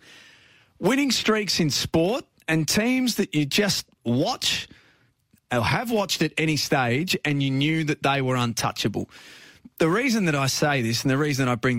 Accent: Australian